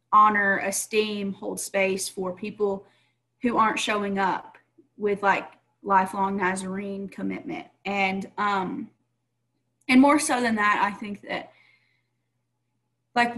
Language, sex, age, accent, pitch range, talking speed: English, female, 30-49, American, 185-225 Hz, 115 wpm